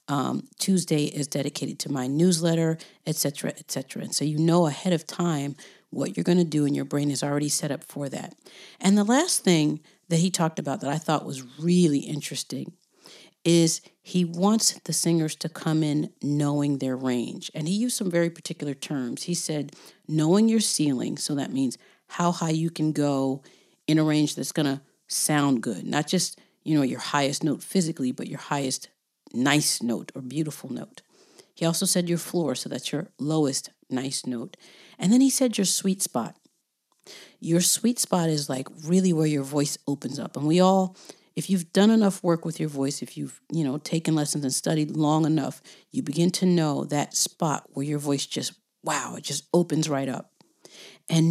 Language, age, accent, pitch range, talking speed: English, 40-59, American, 145-175 Hz, 195 wpm